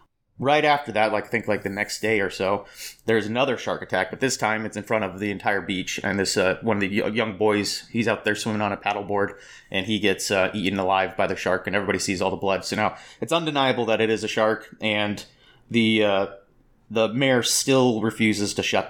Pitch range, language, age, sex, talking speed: 100-115 Hz, English, 30-49, male, 230 wpm